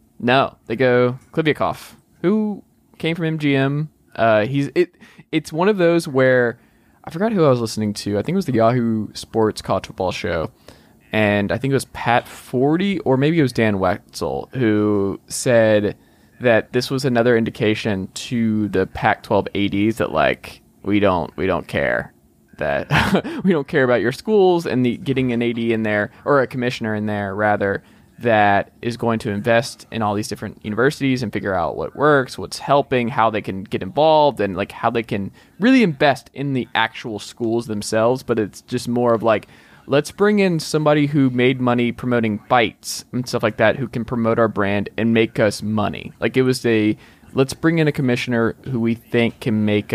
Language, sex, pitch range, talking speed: English, male, 105-135 Hz, 195 wpm